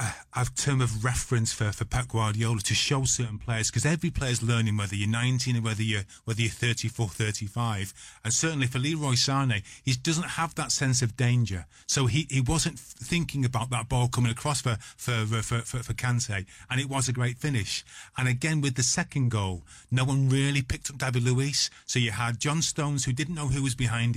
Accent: British